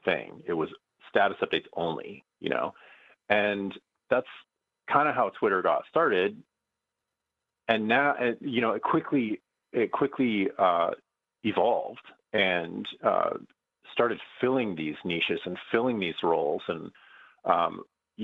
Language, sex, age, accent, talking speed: English, male, 30-49, American, 130 wpm